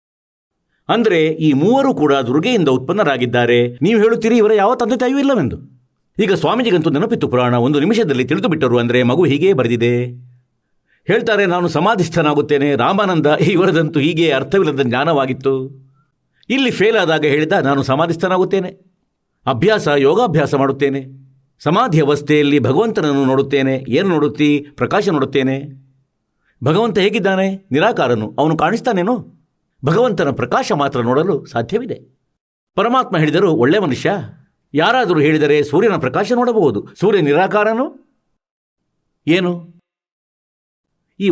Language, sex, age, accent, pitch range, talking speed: Kannada, male, 60-79, native, 135-185 Hz, 105 wpm